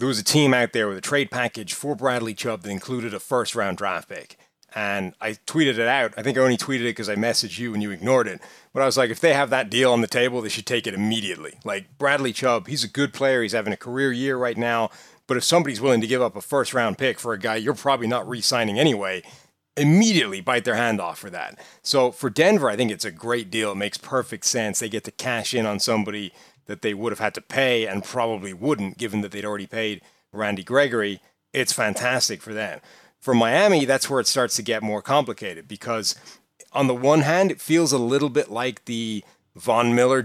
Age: 30-49